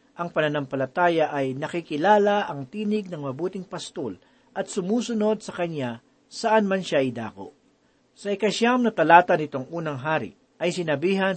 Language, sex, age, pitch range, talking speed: Filipino, male, 50-69, 140-195 Hz, 135 wpm